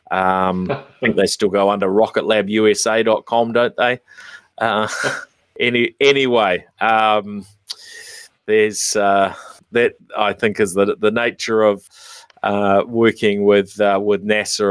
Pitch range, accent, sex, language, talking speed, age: 100-115 Hz, Australian, male, English, 120 wpm, 30-49